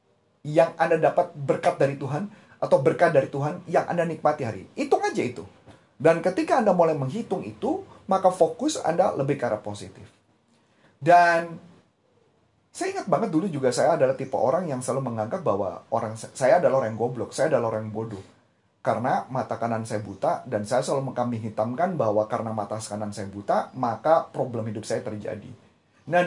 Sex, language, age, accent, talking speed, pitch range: male, Indonesian, 30-49, native, 170 wpm, 110-165 Hz